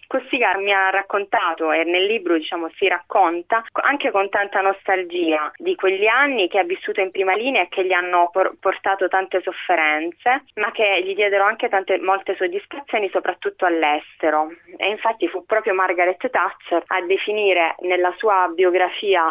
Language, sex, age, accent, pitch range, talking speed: Italian, female, 20-39, native, 170-220 Hz, 160 wpm